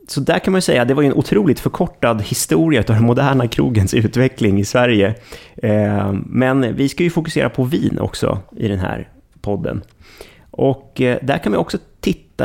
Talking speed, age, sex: 190 wpm, 30-49, male